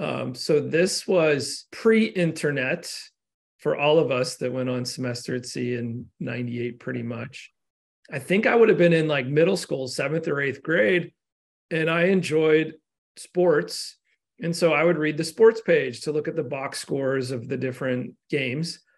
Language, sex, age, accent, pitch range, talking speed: English, male, 40-59, American, 145-170 Hz, 175 wpm